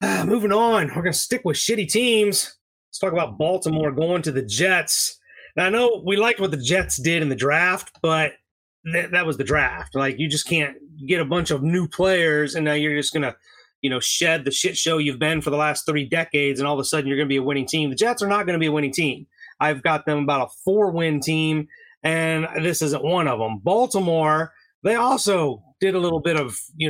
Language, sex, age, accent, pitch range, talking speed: English, male, 30-49, American, 145-180 Hz, 245 wpm